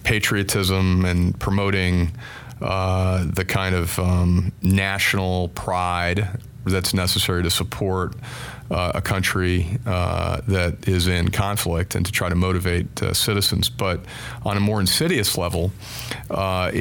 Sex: male